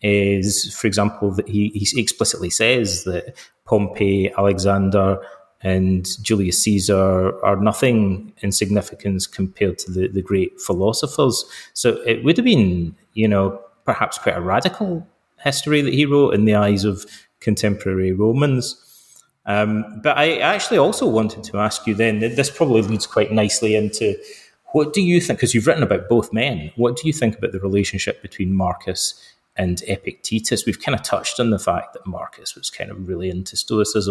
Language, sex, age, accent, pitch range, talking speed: English, male, 30-49, British, 95-110 Hz, 170 wpm